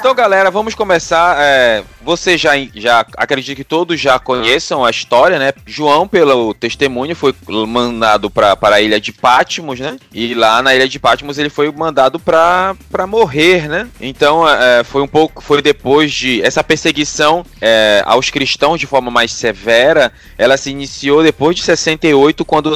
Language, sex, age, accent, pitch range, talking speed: Portuguese, male, 20-39, Brazilian, 130-165 Hz, 165 wpm